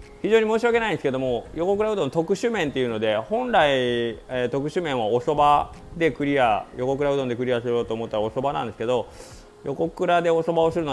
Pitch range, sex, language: 110-160 Hz, male, Japanese